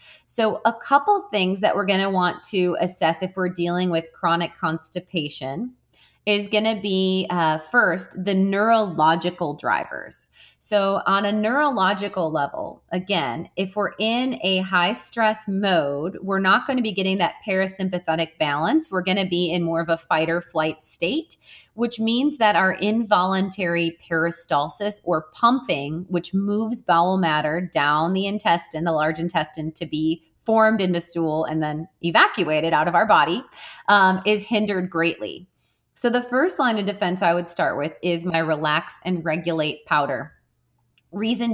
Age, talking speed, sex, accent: 30-49, 155 wpm, female, American